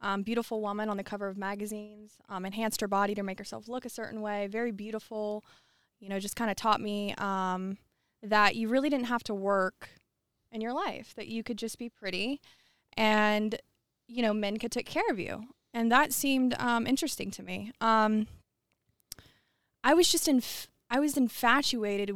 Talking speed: 185 wpm